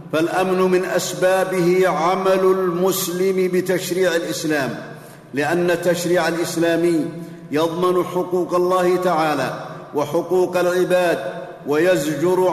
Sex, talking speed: male, 80 wpm